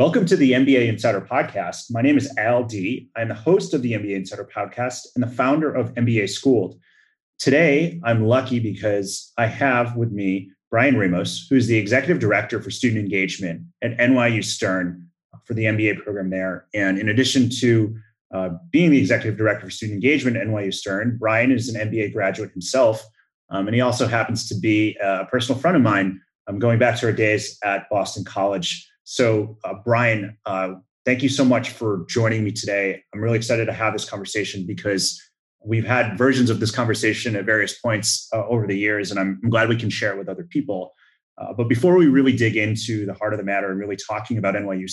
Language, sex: English, male